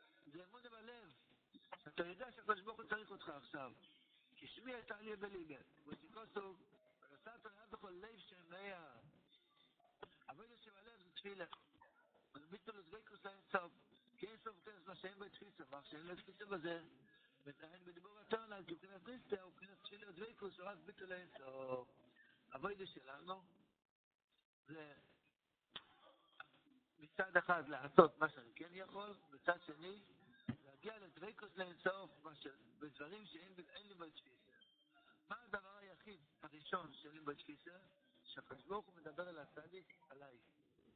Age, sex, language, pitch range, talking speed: 60-79, male, Hebrew, 155-205 Hz, 130 wpm